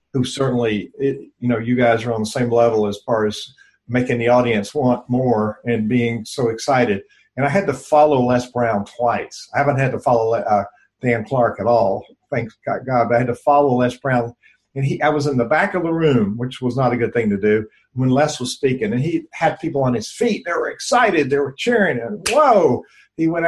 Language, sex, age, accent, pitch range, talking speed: English, male, 50-69, American, 120-145 Hz, 235 wpm